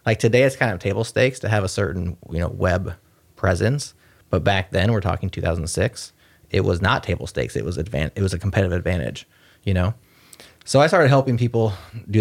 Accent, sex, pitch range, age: American, male, 95-115 Hz, 30-49